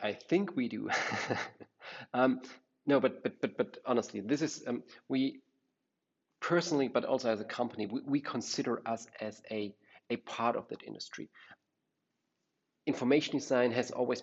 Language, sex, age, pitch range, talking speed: English, male, 40-59, 110-130 Hz, 150 wpm